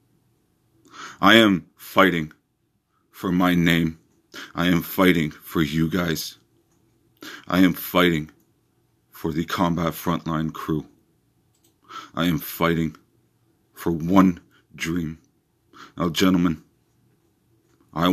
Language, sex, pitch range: English, male, 85-100 Hz